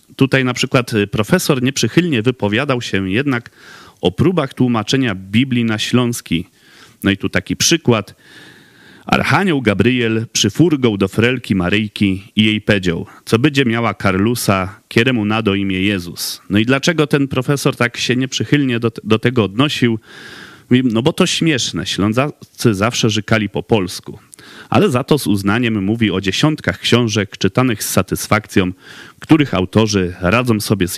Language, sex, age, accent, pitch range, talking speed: Polish, male, 40-59, native, 100-125 Hz, 145 wpm